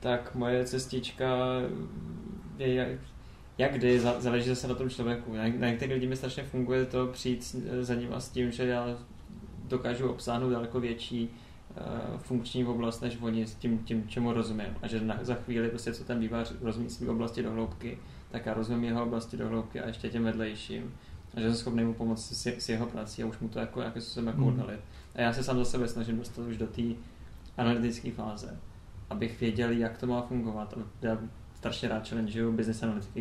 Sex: male